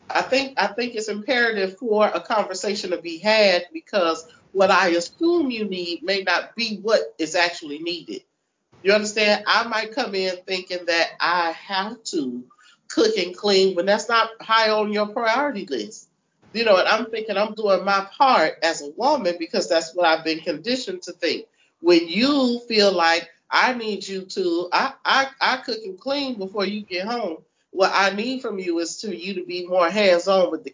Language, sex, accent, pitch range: English, male, American, 175-230 Hz